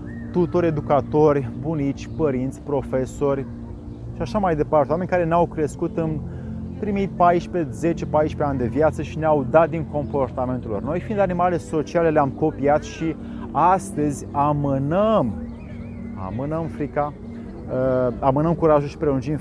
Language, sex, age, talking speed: Romanian, male, 30-49, 125 wpm